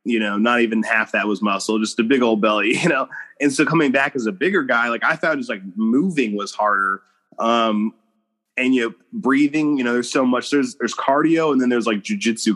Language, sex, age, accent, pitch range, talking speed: English, male, 20-39, American, 110-130 Hz, 235 wpm